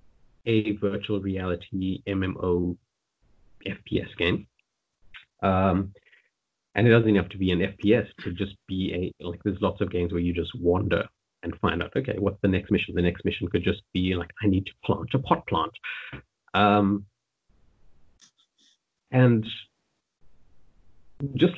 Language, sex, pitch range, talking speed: English, male, 95-110 Hz, 145 wpm